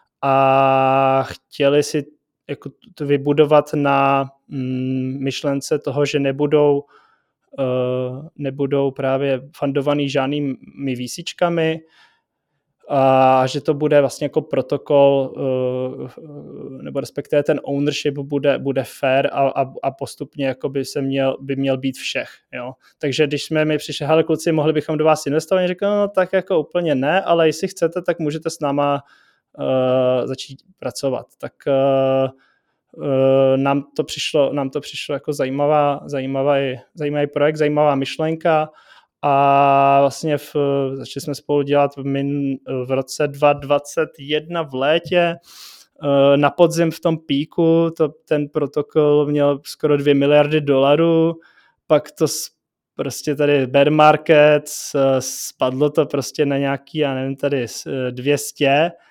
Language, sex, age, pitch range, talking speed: Czech, male, 20-39, 135-150 Hz, 140 wpm